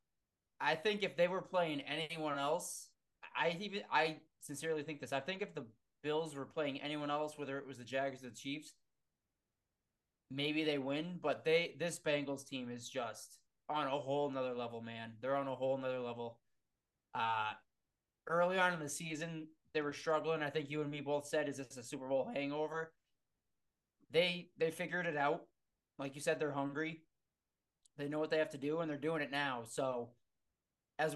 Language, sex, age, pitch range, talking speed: English, male, 20-39, 130-155 Hz, 190 wpm